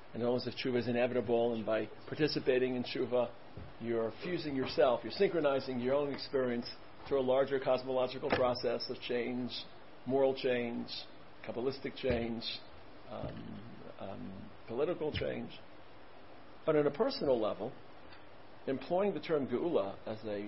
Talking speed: 130 wpm